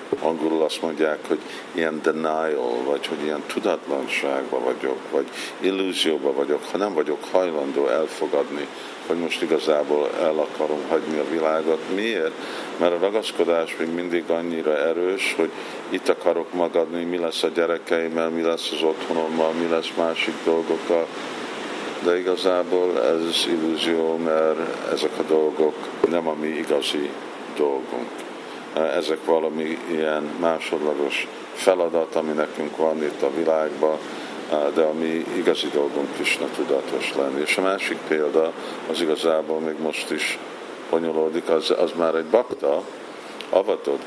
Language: Hungarian